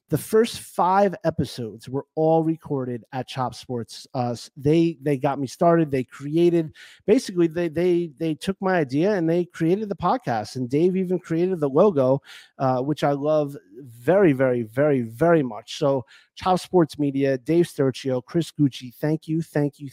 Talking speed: 170 wpm